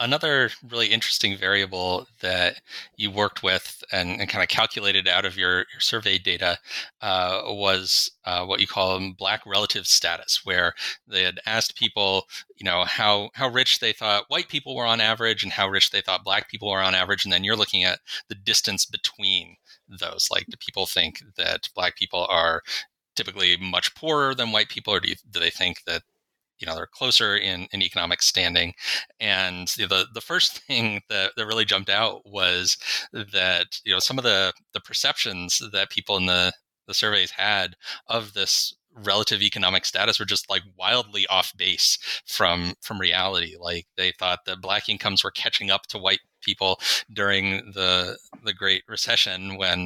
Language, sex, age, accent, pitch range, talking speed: English, male, 30-49, American, 90-110 Hz, 185 wpm